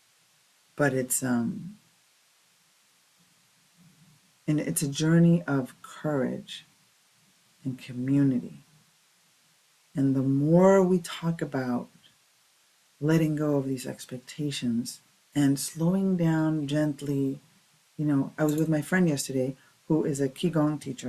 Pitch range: 140-175 Hz